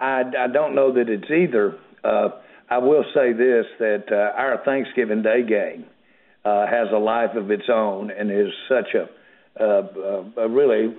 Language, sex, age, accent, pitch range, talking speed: English, male, 60-79, American, 105-120 Hz, 175 wpm